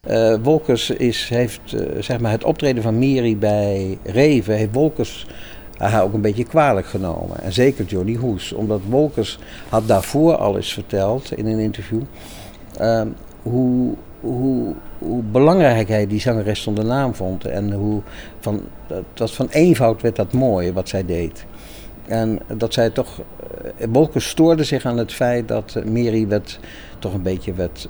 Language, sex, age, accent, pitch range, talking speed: Dutch, male, 50-69, Dutch, 100-120 Hz, 165 wpm